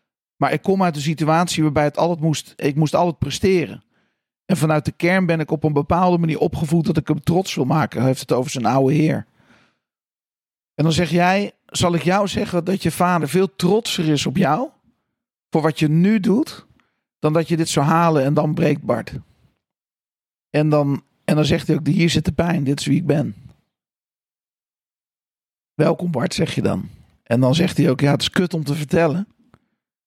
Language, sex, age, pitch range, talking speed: Dutch, male, 40-59, 150-180 Hz, 205 wpm